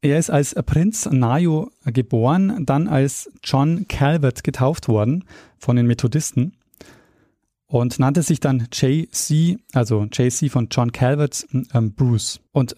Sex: male